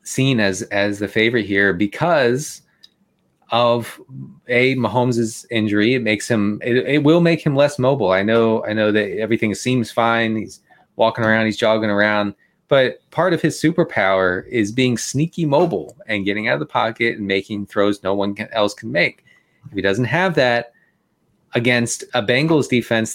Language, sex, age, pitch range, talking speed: English, male, 30-49, 110-140 Hz, 175 wpm